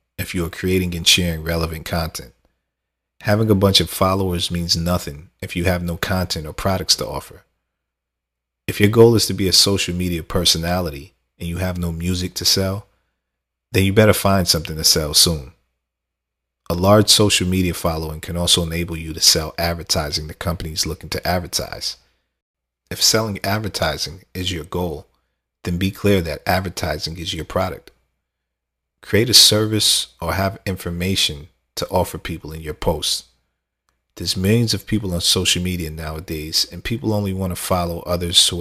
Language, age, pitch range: English, 40-59, 75-95 Hz